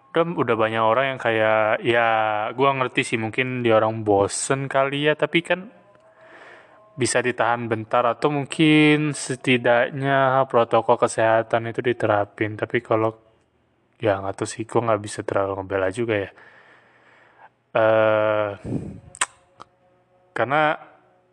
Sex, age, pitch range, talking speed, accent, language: male, 20-39, 105-130 Hz, 115 wpm, native, Indonesian